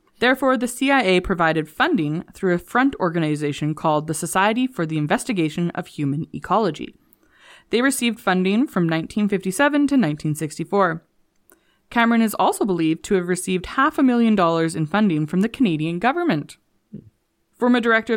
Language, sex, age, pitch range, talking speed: English, female, 20-39, 160-220 Hz, 145 wpm